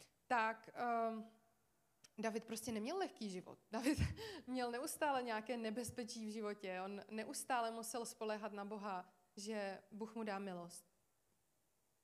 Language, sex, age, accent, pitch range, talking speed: Czech, female, 20-39, native, 210-255 Hz, 125 wpm